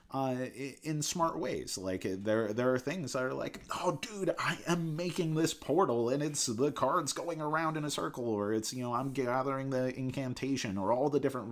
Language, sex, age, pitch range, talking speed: English, male, 30-49, 95-125 Hz, 210 wpm